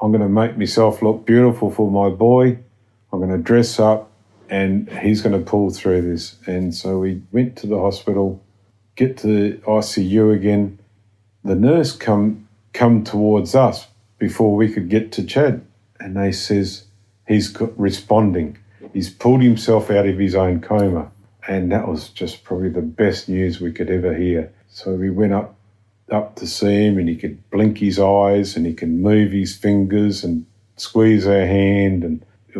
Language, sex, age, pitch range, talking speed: English, male, 50-69, 95-110 Hz, 180 wpm